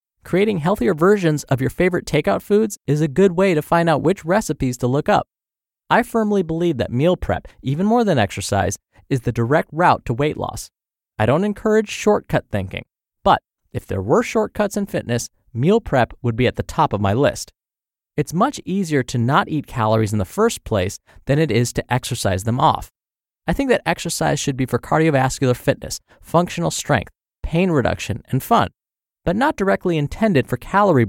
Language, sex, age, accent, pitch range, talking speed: English, male, 20-39, American, 120-190 Hz, 190 wpm